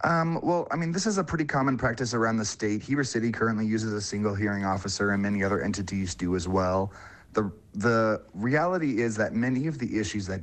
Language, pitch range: English, 95-110 Hz